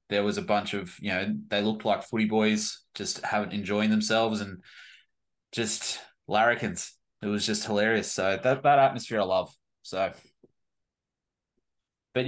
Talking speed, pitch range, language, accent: 150 wpm, 105-135 Hz, English, Australian